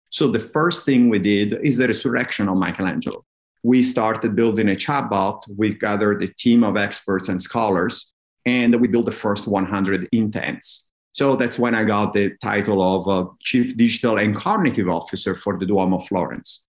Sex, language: male, English